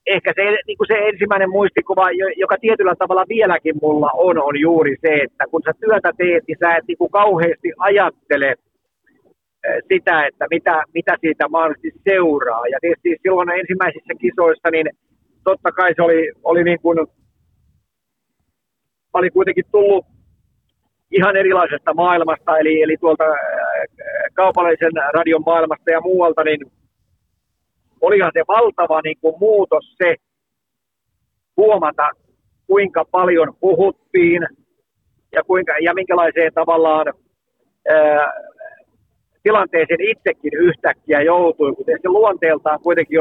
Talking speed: 125 wpm